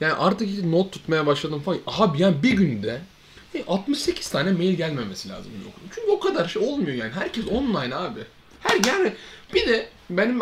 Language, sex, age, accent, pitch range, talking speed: Turkish, male, 30-49, native, 145-215 Hz, 165 wpm